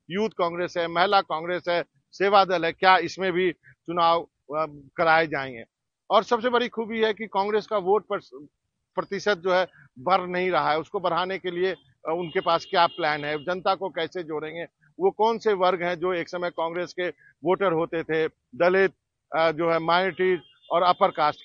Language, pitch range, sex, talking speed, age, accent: Hindi, 160-190 Hz, male, 185 wpm, 50-69, native